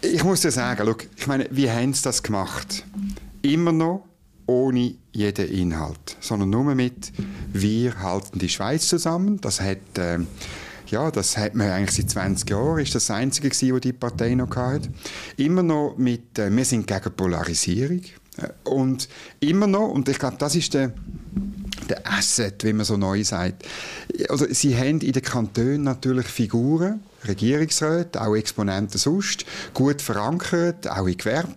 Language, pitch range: German, 105-155 Hz